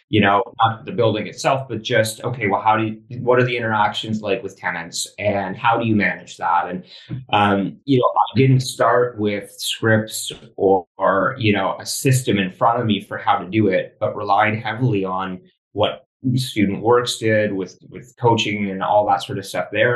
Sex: male